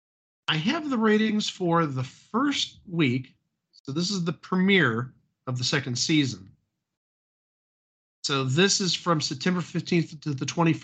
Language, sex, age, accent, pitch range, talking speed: English, male, 50-69, American, 140-205 Hz, 150 wpm